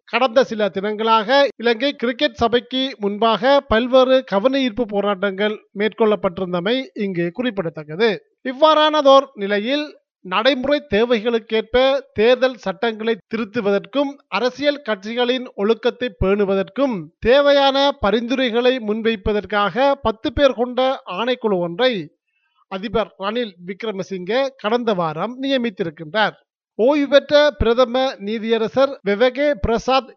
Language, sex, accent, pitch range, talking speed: Tamil, male, native, 205-260 Hz, 90 wpm